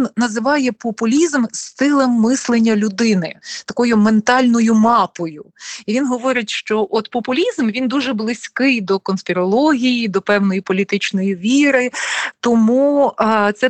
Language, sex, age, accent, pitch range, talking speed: Ukrainian, female, 30-49, native, 200-245 Hz, 115 wpm